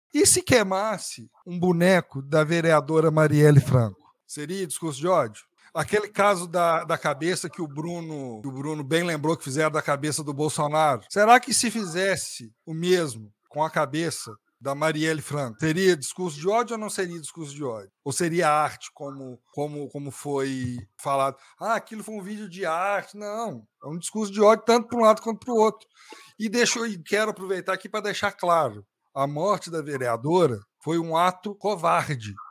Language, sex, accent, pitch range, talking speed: Portuguese, male, Brazilian, 150-210 Hz, 180 wpm